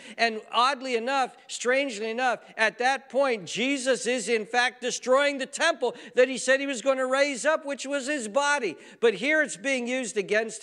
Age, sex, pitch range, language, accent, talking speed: 50-69, male, 210-305 Hz, English, American, 190 wpm